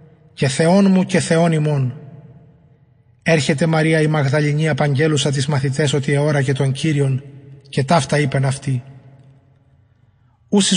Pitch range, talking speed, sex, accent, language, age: 135-165 Hz, 135 wpm, male, Greek, English, 30-49